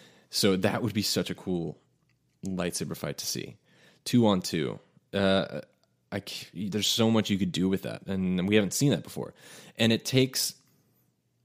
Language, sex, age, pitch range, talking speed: English, male, 20-39, 95-115 Hz, 170 wpm